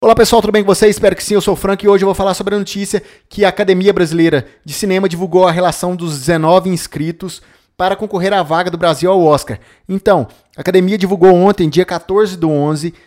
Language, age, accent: Portuguese, 20-39, Brazilian